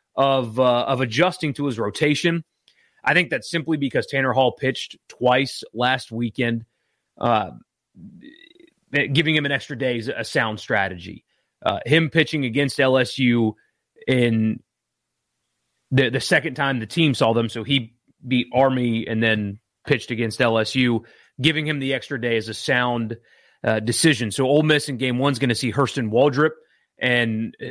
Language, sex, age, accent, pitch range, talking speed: English, male, 30-49, American, 115-145 Hz, 160 wpm